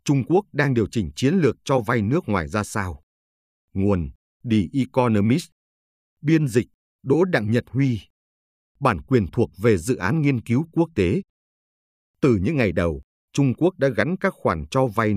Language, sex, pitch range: Vietnamese, male, 100-140 Hz